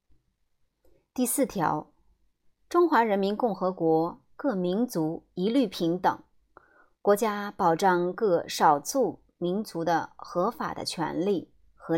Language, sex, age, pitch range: Chinese, male, 30-49, 165-235 Hz